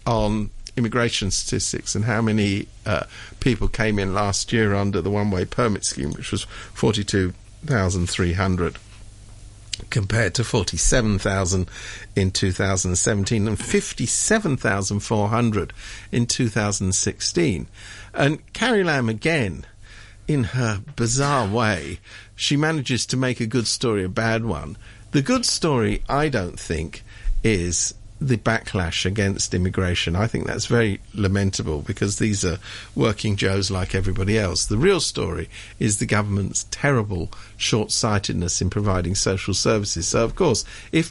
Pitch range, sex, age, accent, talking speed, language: 95-115 Hz, male, 50-69, British, 125 wpm, English